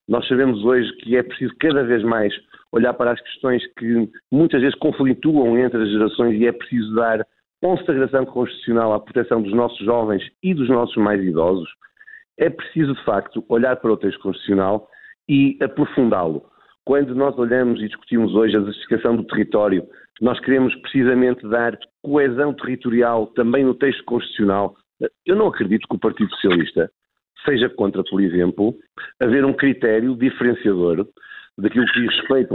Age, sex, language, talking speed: 50-69, male, Portuguese, 160 wpm